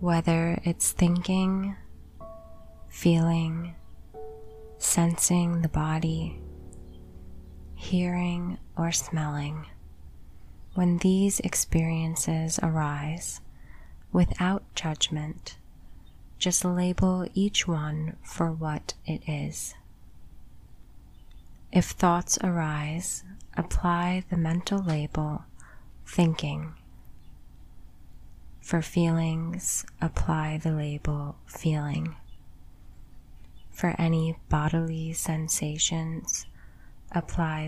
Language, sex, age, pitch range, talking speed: English, female, 20-39, 105-170 Hz, 70 wpm